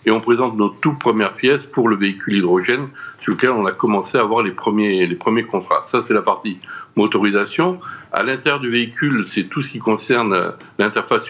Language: French